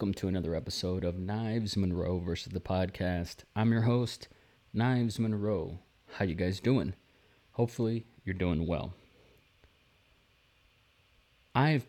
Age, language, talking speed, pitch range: 30-49, English, 120 wpm, 90-115 Hz